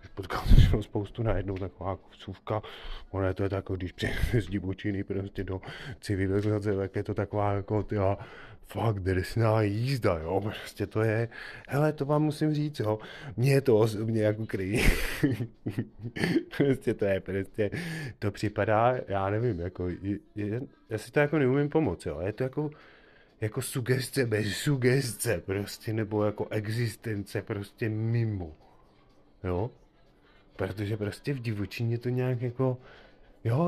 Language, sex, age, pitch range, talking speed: Czech, male, 30-49, 100-125 Hz, 145 wpm